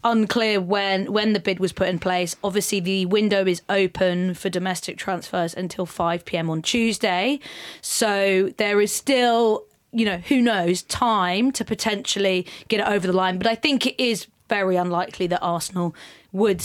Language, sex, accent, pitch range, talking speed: English, female, British, 180-225 Hz, 175 wpm